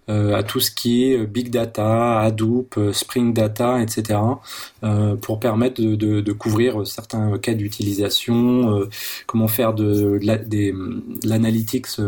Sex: male